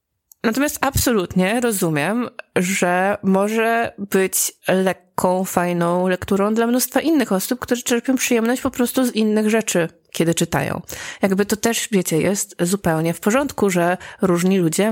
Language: Polish